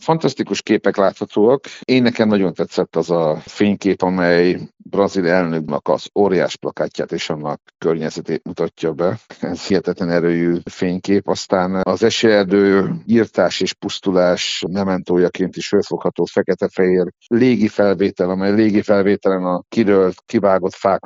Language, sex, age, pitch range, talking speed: Hungarian, male, 60-79, 85-100 Hz, 125 wpm